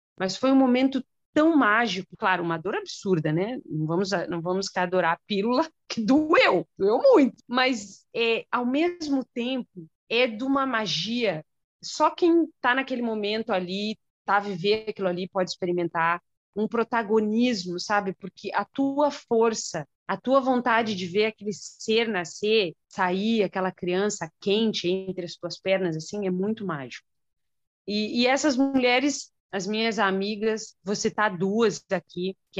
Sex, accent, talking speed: female, Brazilian, 155 wpm